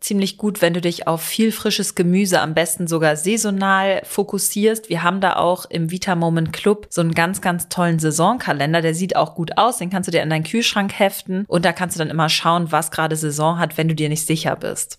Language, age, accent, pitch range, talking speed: German, 30-49, German, 165-195 Hz, 230 wpm